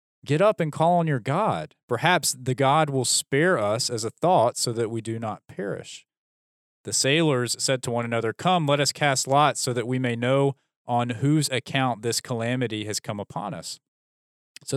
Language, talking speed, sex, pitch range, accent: English, 195 wpm, male, 115-150 Hz, American